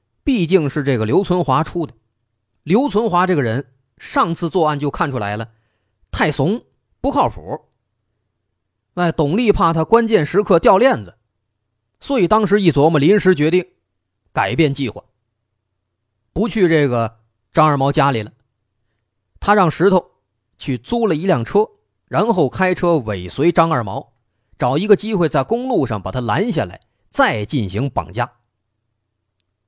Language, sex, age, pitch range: Chinese, male, 30-49, 105-170 Hz